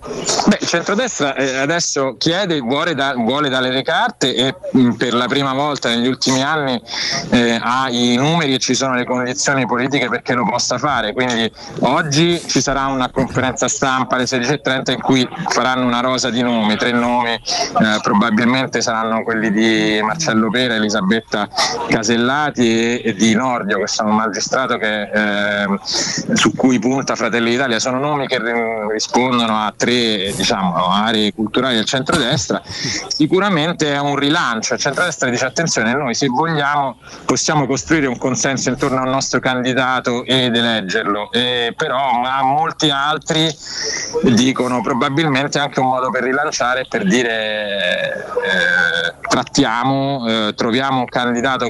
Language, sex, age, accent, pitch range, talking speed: Italian, male, 30-49, native, 115-140 Hz, 140 wpm